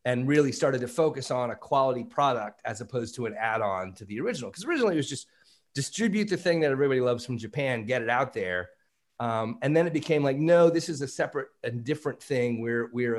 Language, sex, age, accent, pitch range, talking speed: English, male, 30-49, American, 120-170 Hz, 230 wpm